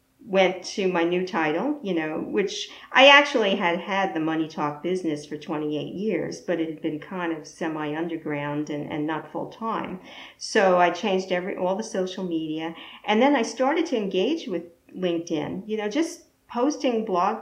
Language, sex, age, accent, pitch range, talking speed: English, female, 50-69, American, 175-225 Hz, 185 wpm